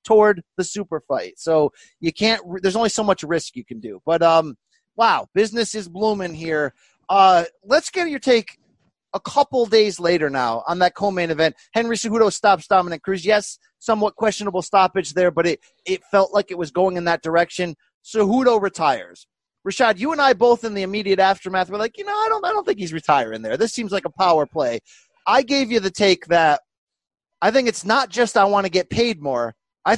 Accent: American